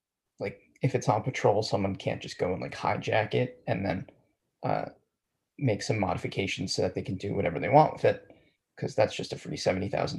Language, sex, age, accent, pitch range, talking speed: English, male, 20-39, American, 105-145 Hz, 205 wpm